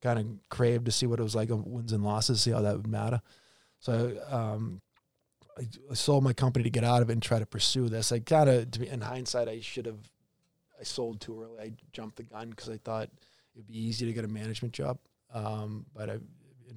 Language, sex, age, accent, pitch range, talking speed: English, male, 20-39, American, 110-120 Hz, 235 wpm